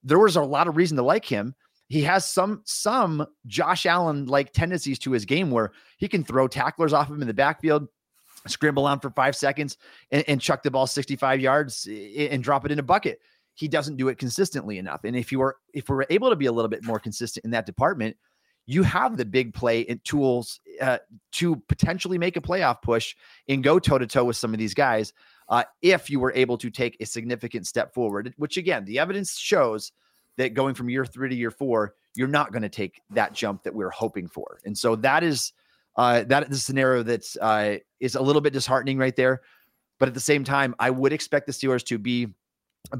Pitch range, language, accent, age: 115-145 Hz, English, American, 30-49